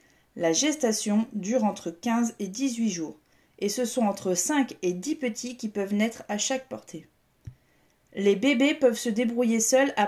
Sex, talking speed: female, 175 wpm